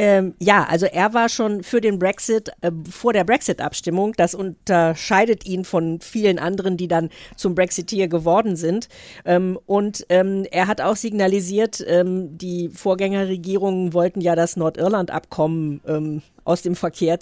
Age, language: 50-69, German